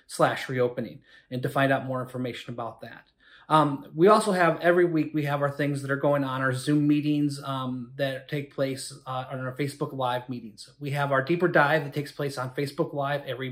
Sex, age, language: male, 30-49, English